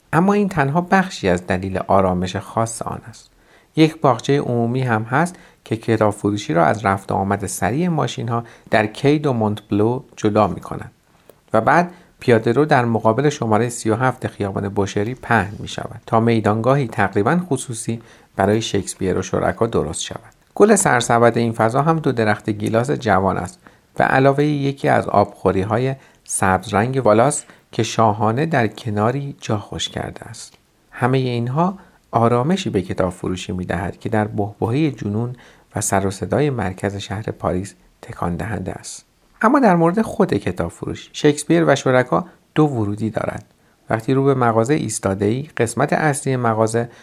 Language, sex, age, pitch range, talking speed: Persian, male, 50-69, 100-140 Hz, 155 wpm